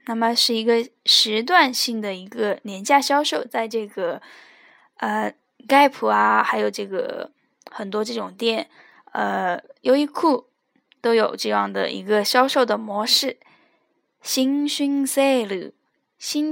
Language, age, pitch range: Chinese, 10-29, 220-275 Hz